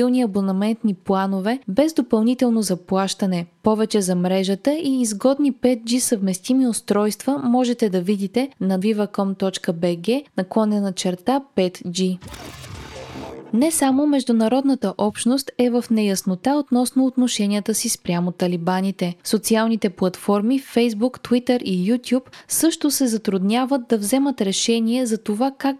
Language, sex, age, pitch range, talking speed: Bulgarian, female, 20-39, 195-255 Hz, 110 wpm